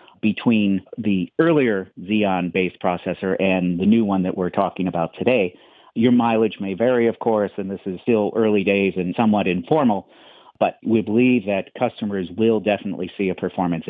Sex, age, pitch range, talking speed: male, 50-69, 95-115 Hz, 170 wpm